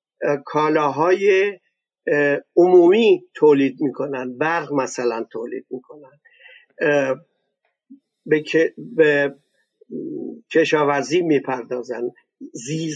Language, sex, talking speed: Persian, male, 65 wpm